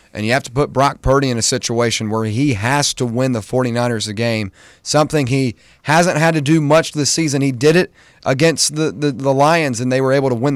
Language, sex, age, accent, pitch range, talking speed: English, male, 30-49, American, 115-145 Hz, 240 wpm